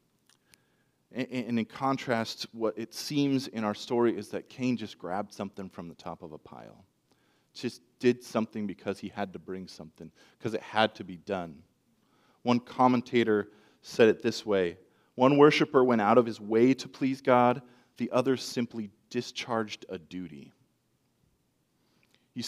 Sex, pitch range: male, 115-135 Hz